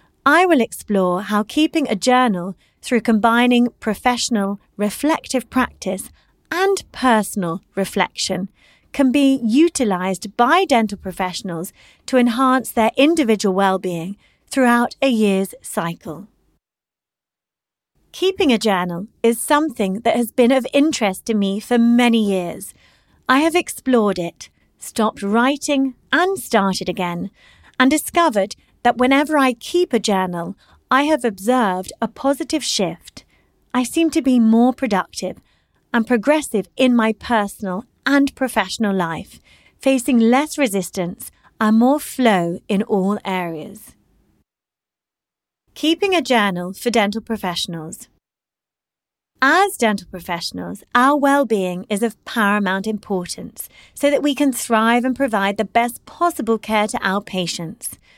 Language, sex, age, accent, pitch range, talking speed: English, female, 30-49, British, 195-265 Hz, 125 wpm